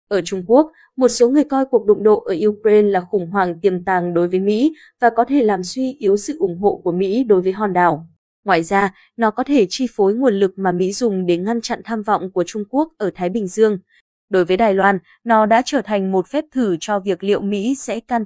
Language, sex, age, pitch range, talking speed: Vietnamese, female, 20-39, 190-240 Hz, 250 wpm